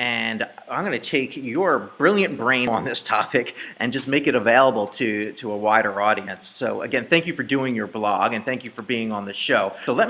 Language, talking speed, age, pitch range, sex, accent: English, 225 wpm, 30-49, 115-150 Hz, male, American